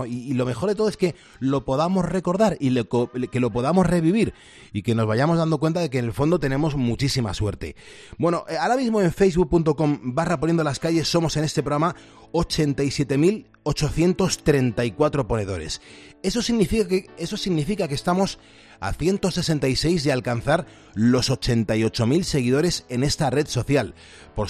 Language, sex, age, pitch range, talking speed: Spanish, male, 30-49, 120-155 Hz, 150 wpm